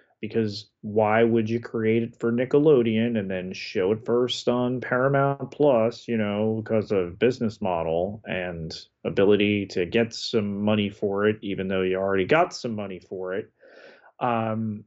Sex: male